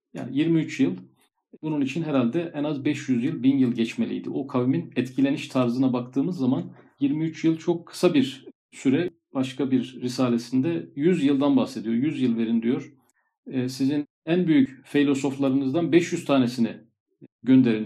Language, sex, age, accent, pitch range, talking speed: Turkish, male, 50-69, native, 125-160 Hz, 140 wpm